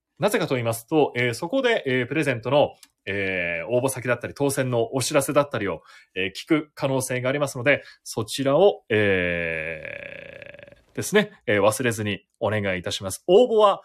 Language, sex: Japanese, male